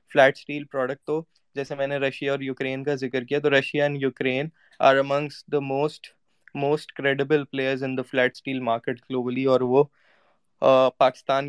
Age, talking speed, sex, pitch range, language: 20-39, 105 wpm, male, 135-150 Hz, Urdu